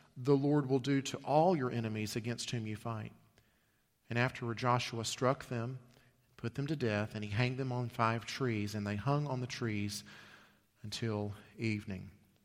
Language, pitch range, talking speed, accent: English, 105-125 Hz, 175 wpm, American